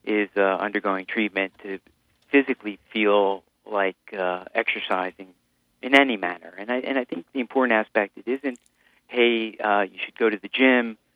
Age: 40-59